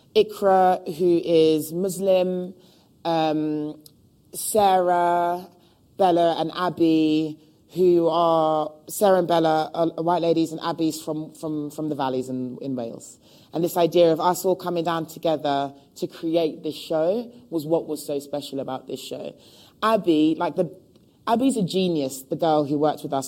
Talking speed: 155 wpm